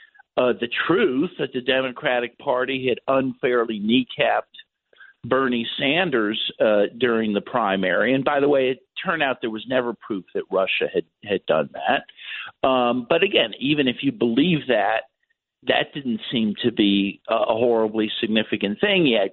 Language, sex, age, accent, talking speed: English, male, 50-69, American, 160 wpm